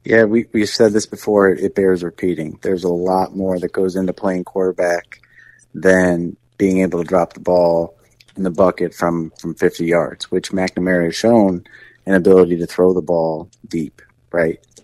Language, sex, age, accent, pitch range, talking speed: English, male, 30-49, American, 85-95 Hz, 180 wpm